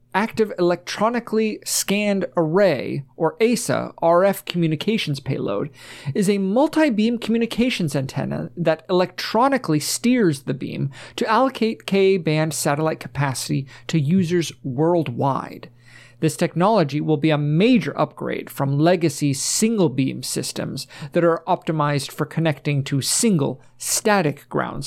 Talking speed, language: 115 wpm, English